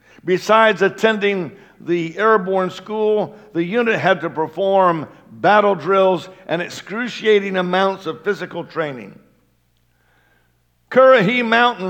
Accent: American